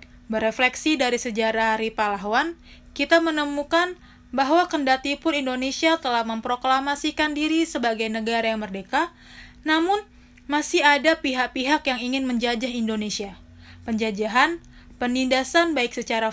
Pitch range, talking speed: 230-295 Hz, 110 wpm